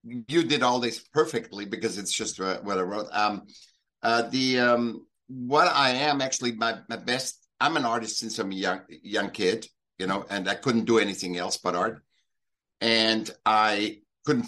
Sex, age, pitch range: male, 60-79, 105-125 Hz